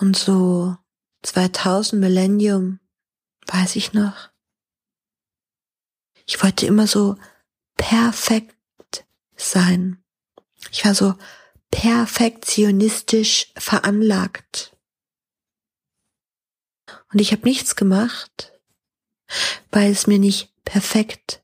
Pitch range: 200-220 Hz